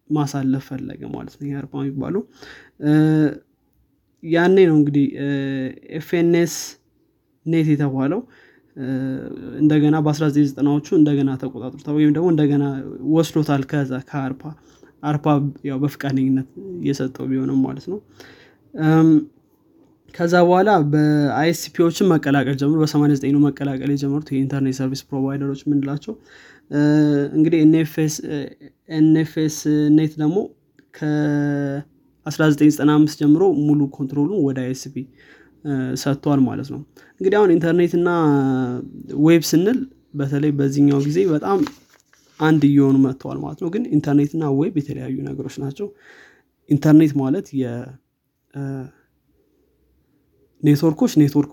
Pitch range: 135-155 Hz